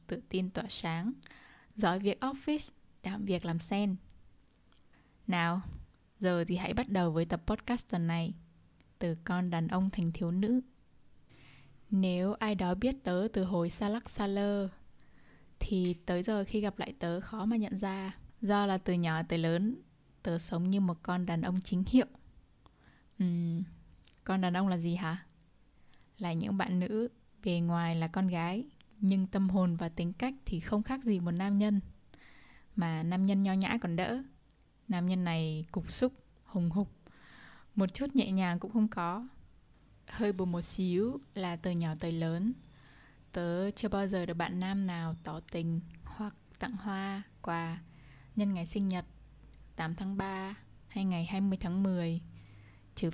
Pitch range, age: 170-205 Hz, 10-29